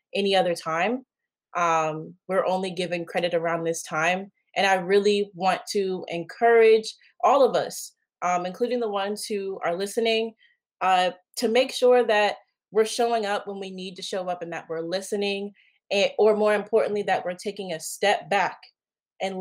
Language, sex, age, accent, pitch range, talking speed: English, female, 20-39, American, 180-215 Hz, 175 wpm